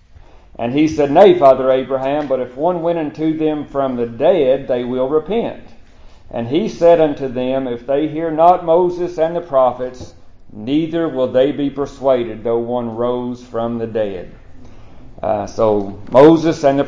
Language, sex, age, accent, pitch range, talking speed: English, male, 50-69, American, 115-145 Hz, 165 wpm